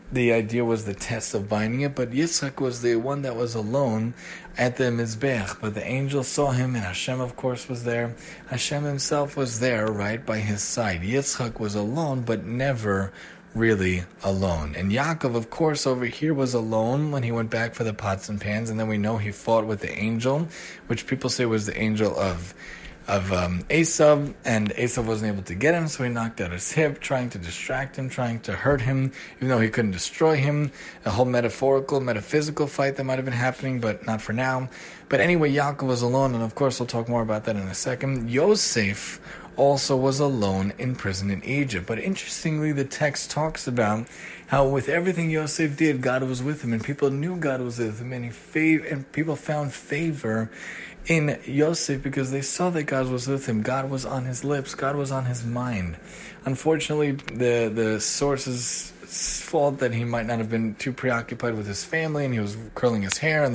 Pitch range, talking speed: 110-140 Hz, 205 wpm